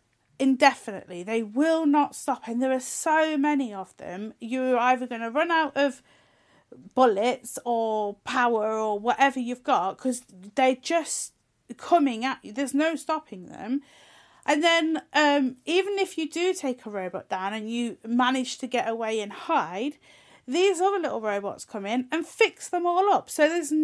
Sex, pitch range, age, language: female, 235-295 Hz, 40-59, English